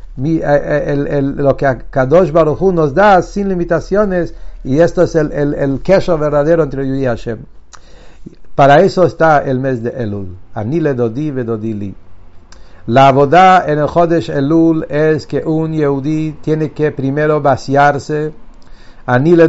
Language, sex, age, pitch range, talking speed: English, male, 60-79, 135-165 Hz, 160 wpm